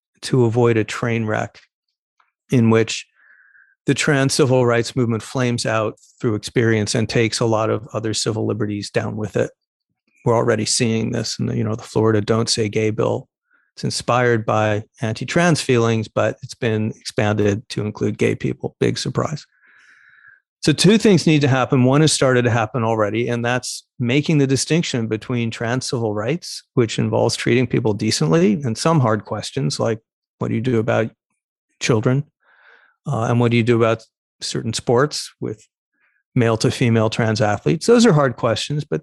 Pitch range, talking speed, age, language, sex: 110-140 Hz, 175 wpm, 40-59, English, male